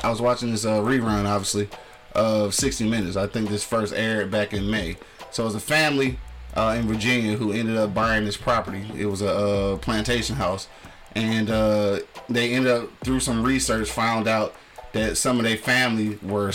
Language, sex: English, male